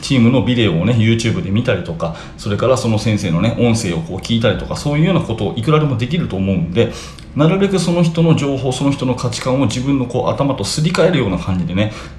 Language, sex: Japanese, male